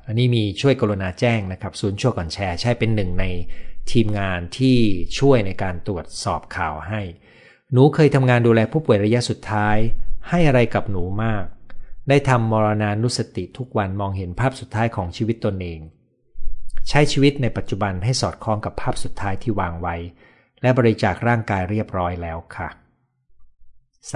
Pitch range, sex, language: 90-125 Hz, male, Thai